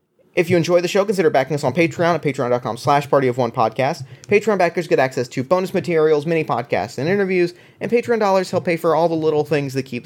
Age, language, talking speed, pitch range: 30-49, English, 210 wpm, 130-180 Hz